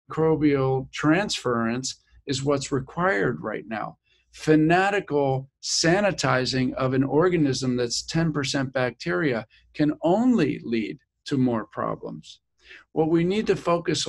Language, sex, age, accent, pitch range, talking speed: English, male, 50-69, American, 130-155 Hz, 110 wpm